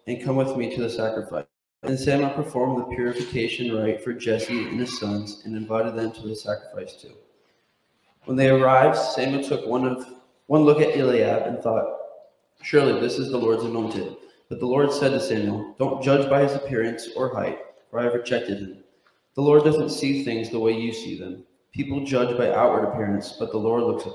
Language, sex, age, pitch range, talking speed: English, male, 20-39, 110-140 Hz, 205 wpm